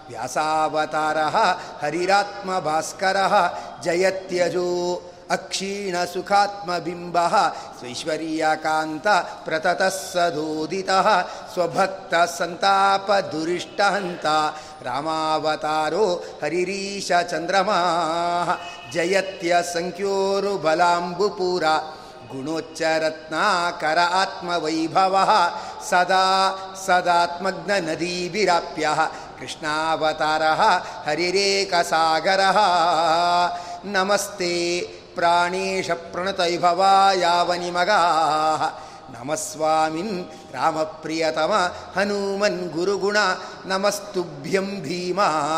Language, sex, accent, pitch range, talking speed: Kannada, male, native, 160-190 Hz, 40 wpm